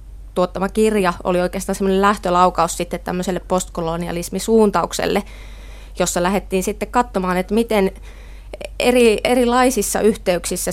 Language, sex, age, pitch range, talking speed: Finnish, female, 20-39, 180-205 Hz, 95 wpm